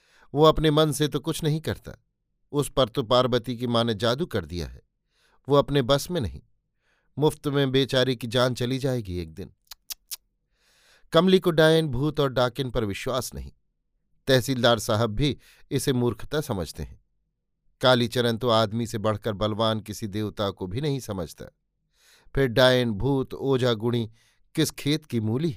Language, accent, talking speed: Hindi, native, 160 wpm